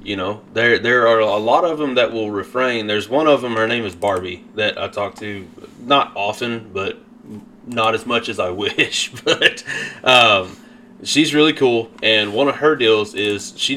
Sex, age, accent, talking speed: male, 20-39, American, 195 wpm